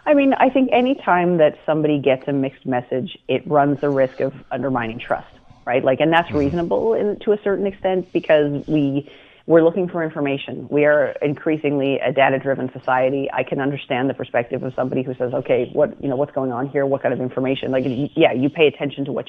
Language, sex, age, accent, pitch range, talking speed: English, female, 30-49, American, 130-150 Hz, 215 wpm